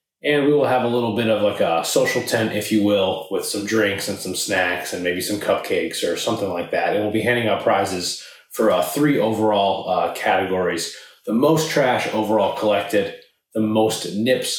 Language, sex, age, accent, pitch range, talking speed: English, male, 30-49, American, 105-150 Hz, 200 wpm